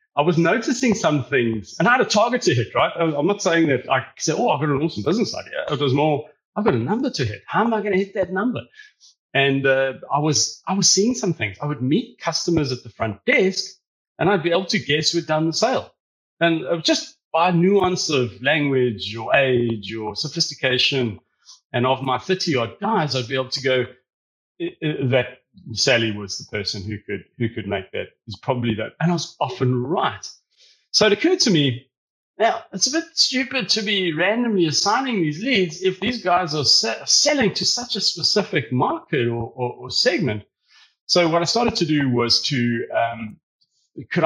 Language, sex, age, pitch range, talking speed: English, male, 30-49, 130-195 Hz, 210 wpm